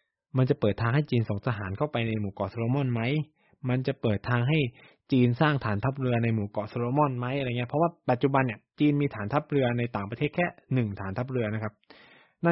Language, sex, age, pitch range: Thai, male, 20-39, 105-145 Hz